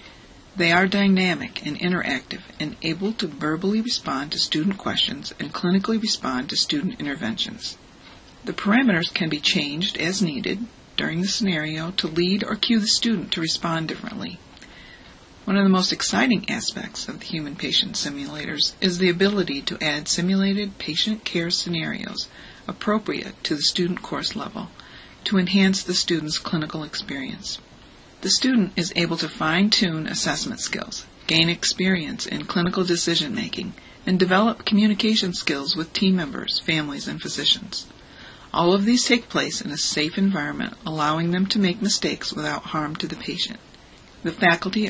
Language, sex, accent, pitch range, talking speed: English, female, American, 165-200 Hz, 150 wpm